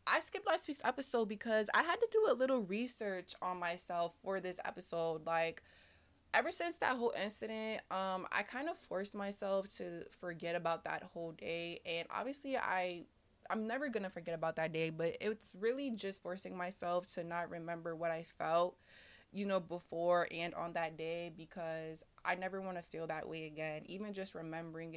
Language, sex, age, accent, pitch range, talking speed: English, female, 20-39, American, 165-205 Hz, 185 wpm